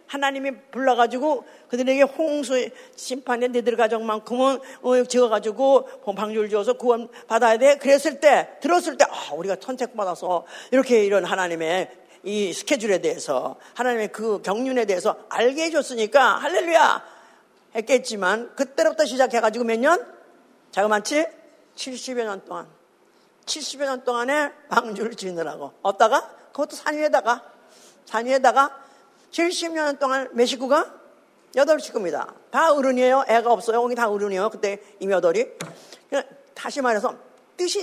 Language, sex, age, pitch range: Korean, female, 50-69, 230-300 Hz